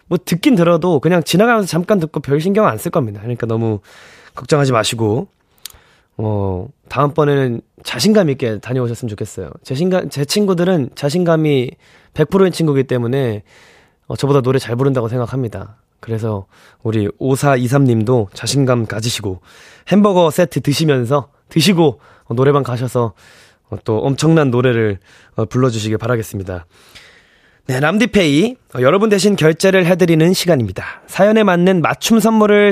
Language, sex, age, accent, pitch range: Korean, male, 20-39, native, 120-185 Hz